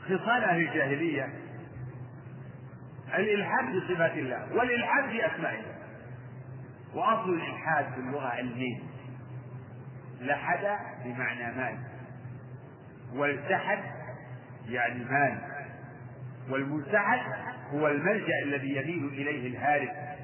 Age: 50-69